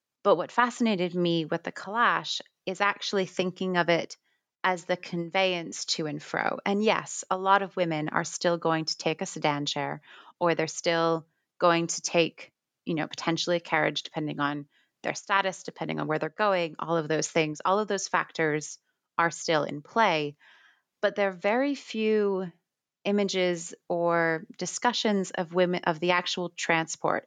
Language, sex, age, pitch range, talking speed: English, female, 30-49, 160-190 Hz, 170 wpm